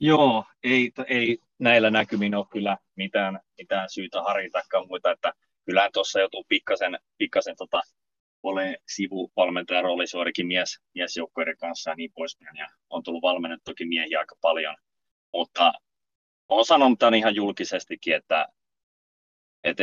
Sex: male